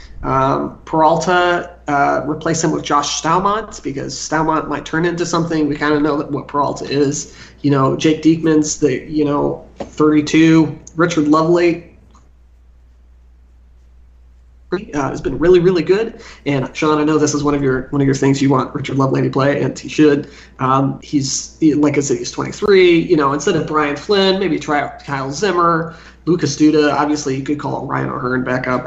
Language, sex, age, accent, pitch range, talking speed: English, male, 20-39, American, 135-170 Hz, 185 wpm